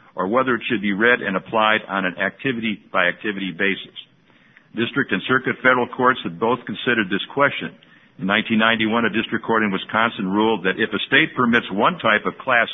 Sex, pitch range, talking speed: male, 95-115 Hz, 195 wpm